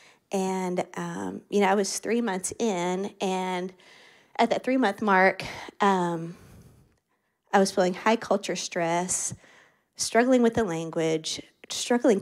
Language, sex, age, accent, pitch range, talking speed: English, female, 30-49, American, 175-205 Hz, 135 wpm